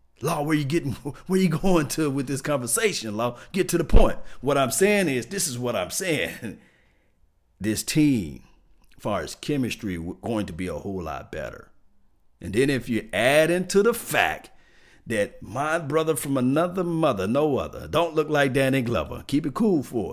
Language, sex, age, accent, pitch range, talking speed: English, male, 50-69, American, 85-125 Hz, 190 wpm